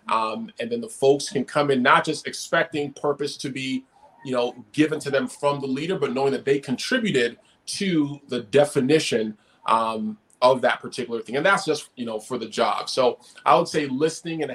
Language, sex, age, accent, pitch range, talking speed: English, male, 30-49, American, 120-150 Hz, 200 wpm